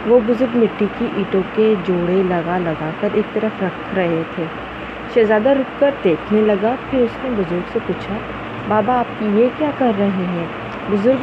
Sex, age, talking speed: female, 20-39, 185 wpm